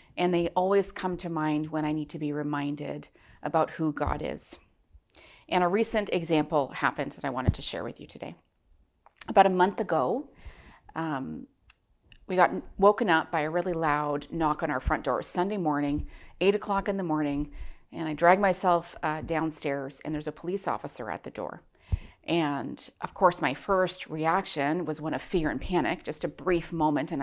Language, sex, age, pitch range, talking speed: English, female, 30-49, 155-190 Hz, 185 wpm